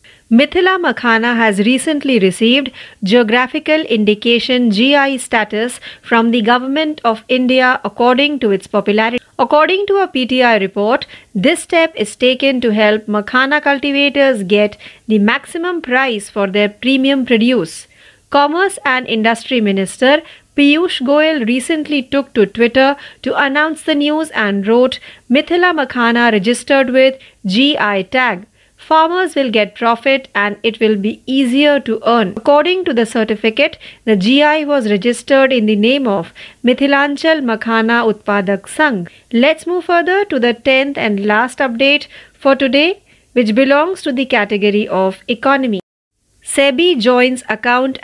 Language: Marathi